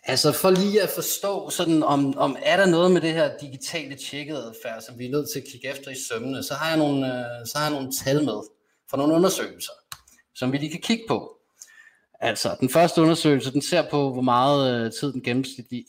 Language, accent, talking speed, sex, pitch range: Danish, native, 215 wpm, male, 120-150 Hz